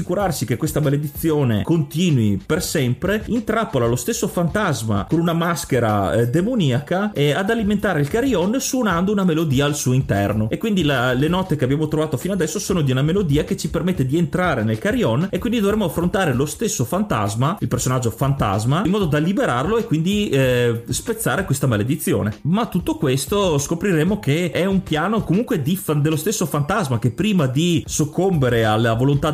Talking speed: 180 wpm